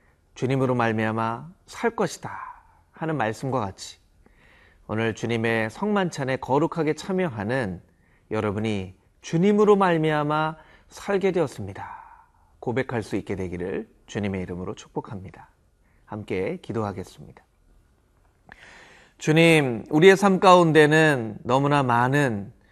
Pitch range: 110-155 Hz